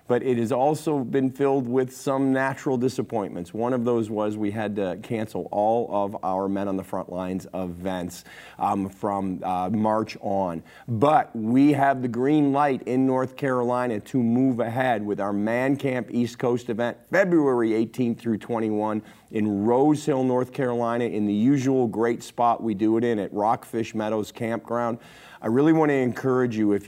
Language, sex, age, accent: English, male, 40-59, American